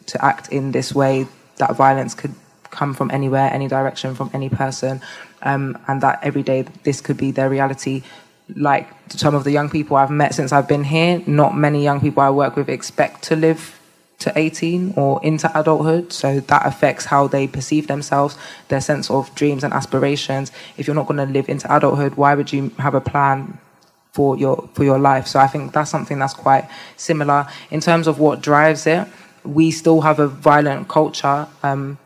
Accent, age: British, 20-39